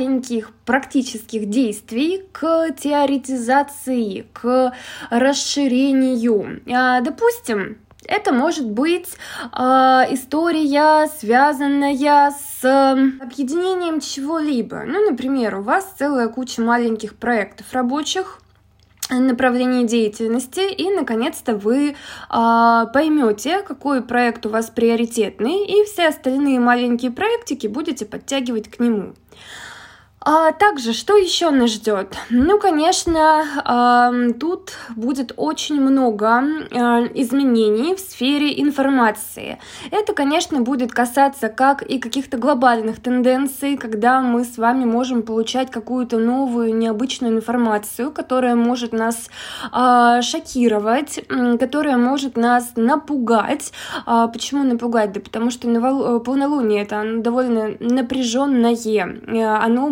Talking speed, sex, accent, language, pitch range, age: 95 wpm, female, native, Russian, 235-285 Hz, 20-39